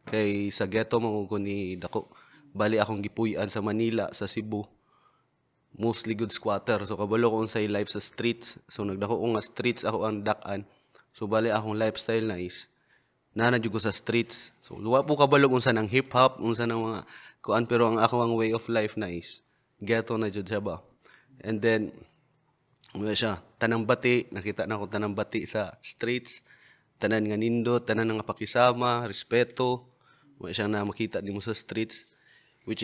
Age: 20-39